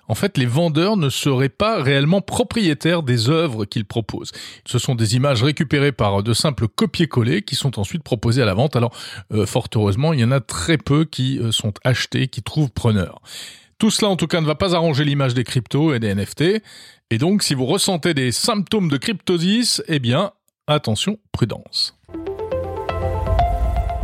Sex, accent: male, French